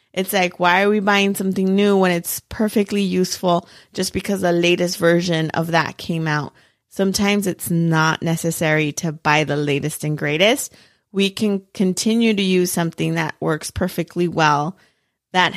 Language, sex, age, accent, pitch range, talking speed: English, female, 30-49, American, 170-200 Hz, 160 wpm